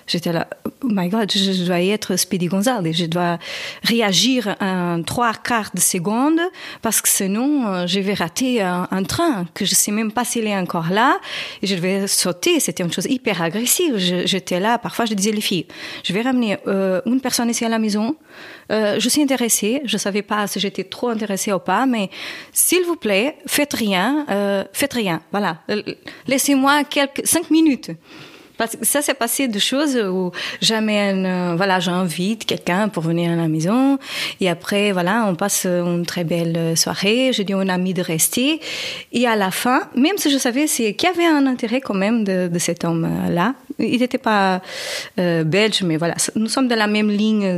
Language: French